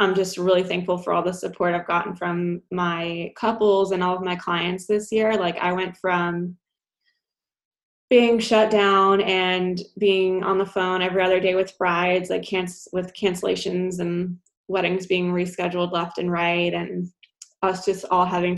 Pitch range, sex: 175-195 Hz, female